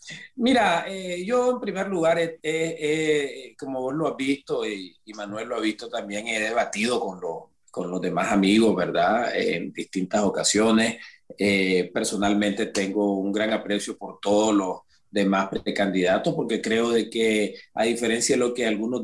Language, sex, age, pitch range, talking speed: Spanish, male, 40-59, 110-150 Hz, 170 wpm